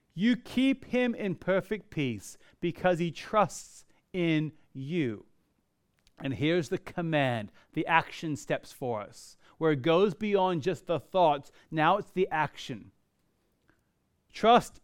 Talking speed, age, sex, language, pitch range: 130 wpm, 30-49, male, English, 140-190 Hz